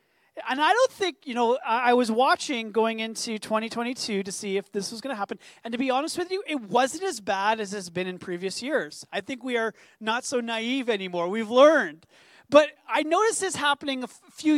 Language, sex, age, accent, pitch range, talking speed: English, male, 30-49, American, 215-280 Hz, 220 wpm